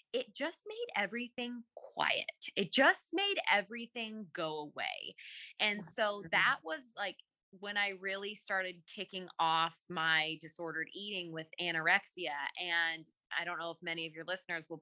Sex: female